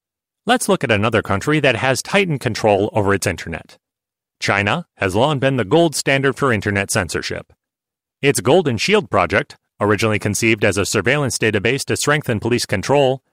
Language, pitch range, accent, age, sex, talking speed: English, 105-145 Hz, American, 30-49, male, 160 wpm